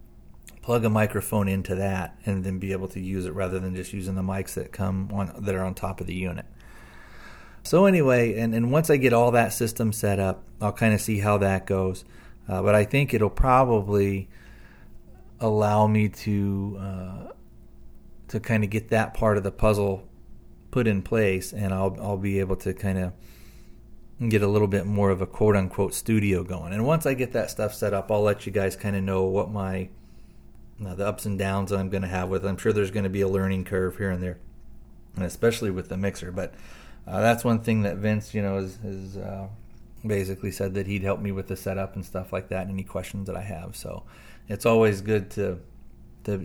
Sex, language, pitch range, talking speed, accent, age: male, English, 95-105 Hz, 220 wpm, American, 30-49